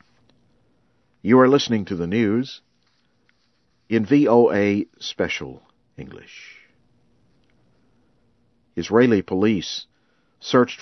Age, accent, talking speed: 50-69, American, 70 wpm